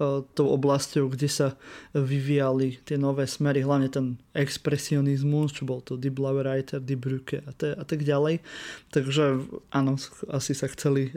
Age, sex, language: 20-39, male, Slovak